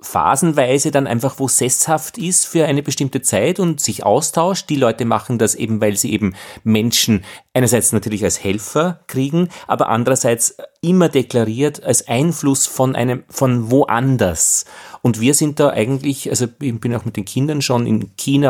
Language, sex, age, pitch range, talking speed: German, male, 30-49, 110-140 Hz, 170 wpm